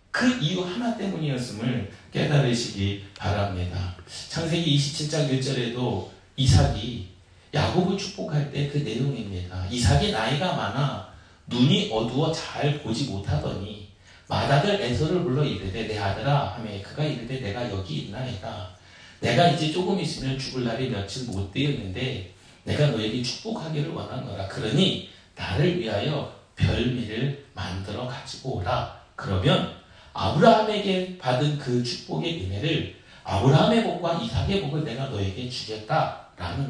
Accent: native